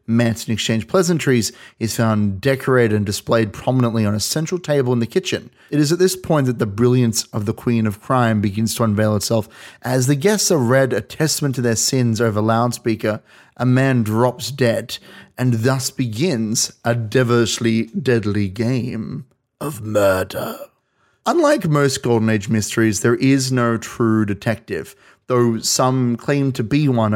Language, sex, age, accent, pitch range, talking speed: English, male, 30-49, Australian, 110-130 Hz, 165 wpm